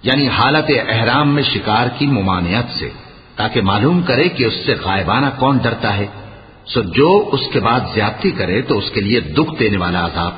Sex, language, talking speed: male, Urdu, 190 wpm